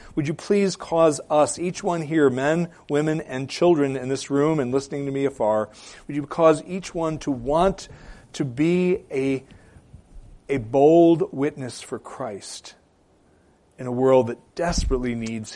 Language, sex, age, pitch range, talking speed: English, male, 40-59, 105-150 Hz, 160 wpm